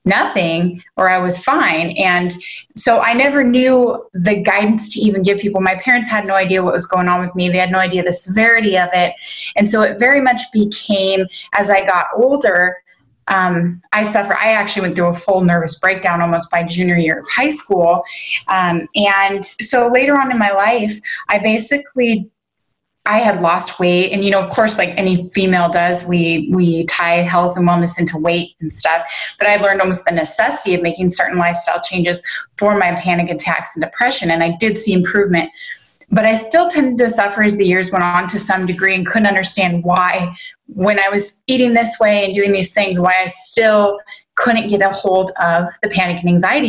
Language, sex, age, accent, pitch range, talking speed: English, female, 20-39, American, 175-215 Hz, 205 wpm